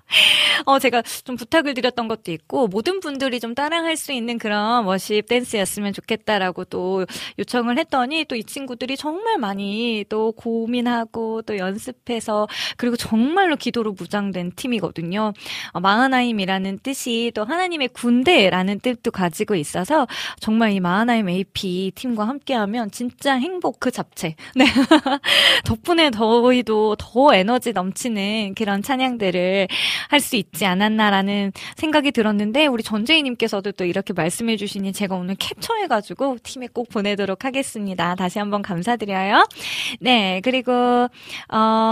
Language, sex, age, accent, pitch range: Korean, female, 20-39, native, 200-265 Hz